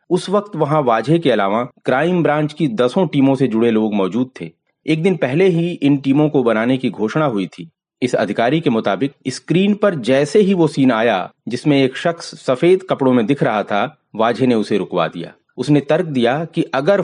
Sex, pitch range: male, 125-165 Hz